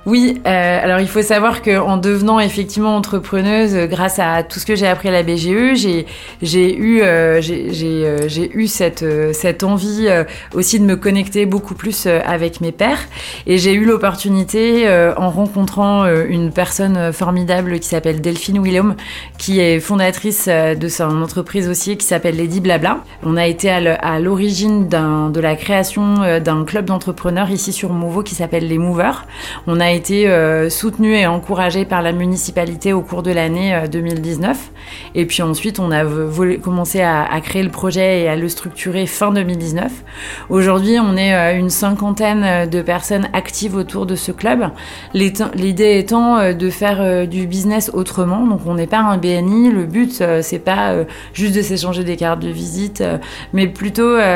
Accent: French